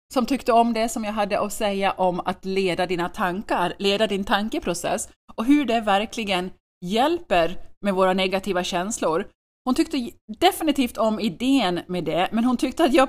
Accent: Swedish